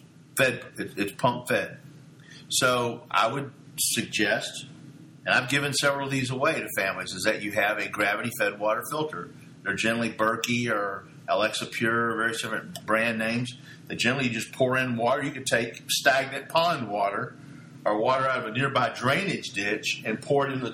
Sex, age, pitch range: male, 50-69, 115-145 Hz